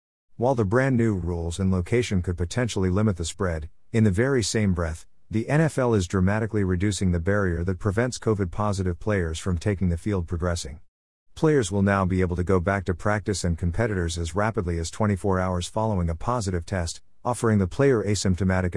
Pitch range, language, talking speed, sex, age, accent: 85-110 Hz, English, 185 wpm, male, 50-69, American